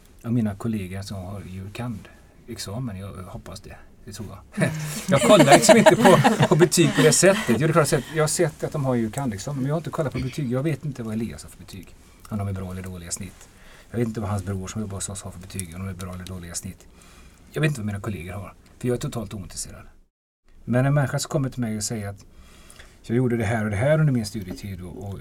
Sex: male